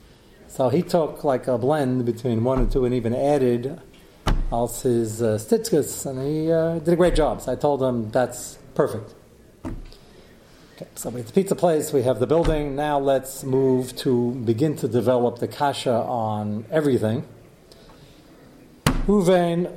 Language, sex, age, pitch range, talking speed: English, male, 40-59, 125-155 Hz, 160 wpm